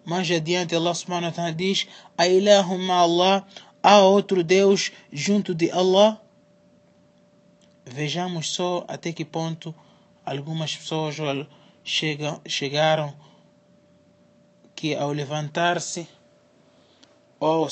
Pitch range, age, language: 150-175 Hz, 20-39, Portuguese